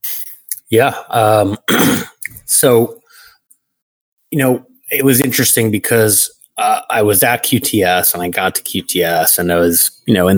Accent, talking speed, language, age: American, 145 wpm, English, 30-49